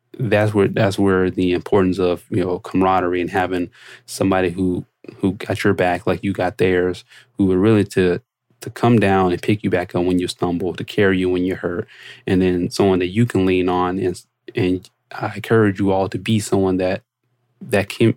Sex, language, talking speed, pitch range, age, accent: male, English, 210 wpm, 90-110 Hz, 20-39, American